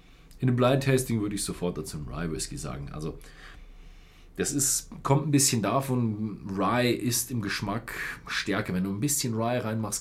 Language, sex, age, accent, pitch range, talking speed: German, male, 40-59, German, 100-135 Hz, 160 wpm